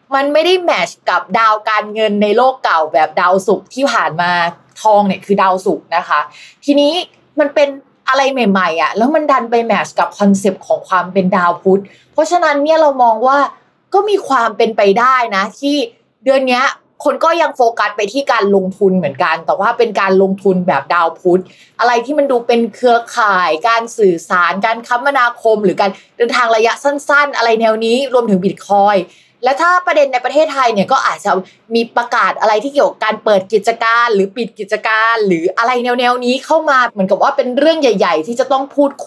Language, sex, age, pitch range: Thai, female, 20-39, 195-270 Hz